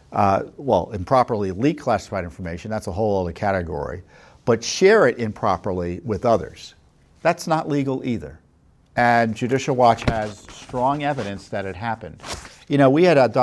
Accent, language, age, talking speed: American, English, 50-69, 150 wpm